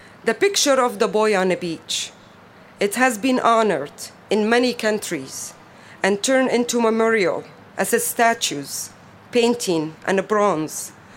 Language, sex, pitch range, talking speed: English, female, 190-240 Hz, 140 wpm